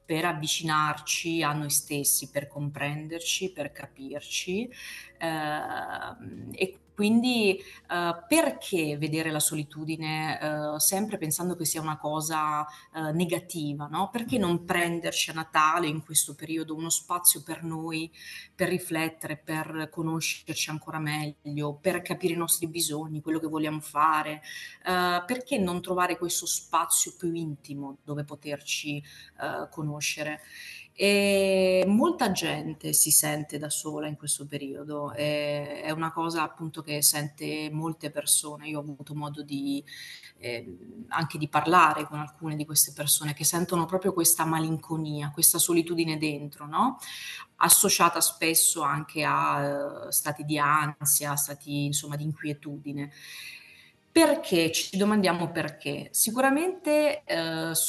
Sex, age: female, 30-49